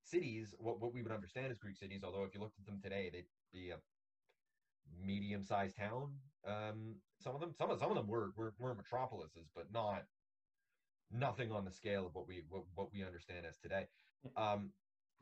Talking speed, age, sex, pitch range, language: 195 wpm, 30-49, male, 100-130 Hz, English